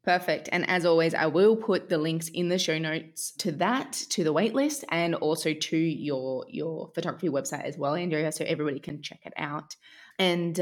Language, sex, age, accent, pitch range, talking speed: English, female, 20-39, Australian, 155-200 Hz, 200 wpm